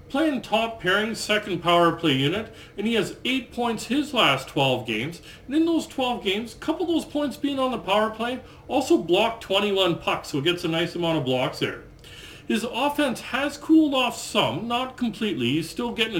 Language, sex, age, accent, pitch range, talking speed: English, male, 40-59, American, 170-230 Hz, 200 wpm